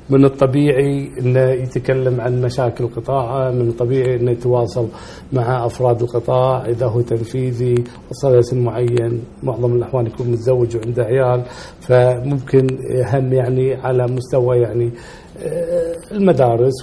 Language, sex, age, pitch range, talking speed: Arabic, male, 40-59, 120-135 Hz, 115 wpm